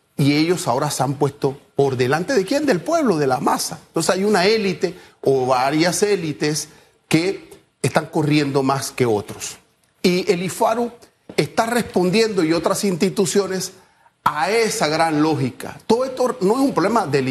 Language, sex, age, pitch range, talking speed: Spanish, male, 40-59, 150-210 Hz, 165 wpm